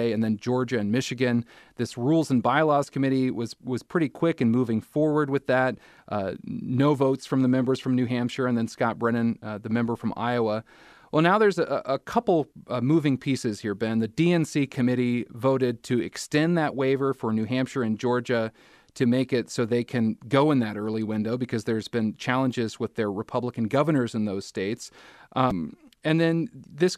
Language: English